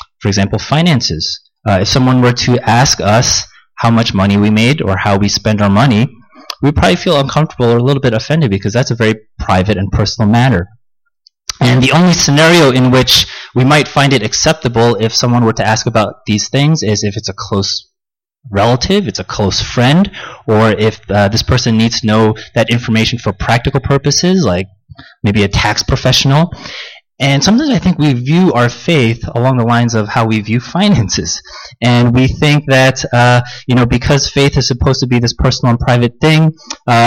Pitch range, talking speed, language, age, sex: 110-135 Hz, 195 wpm, English, 30-49, male